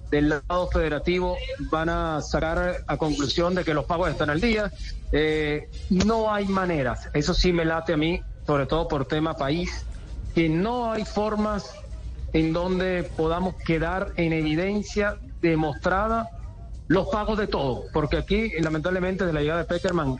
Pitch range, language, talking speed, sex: 160-200 Hz, Spanish, 155 wpm, male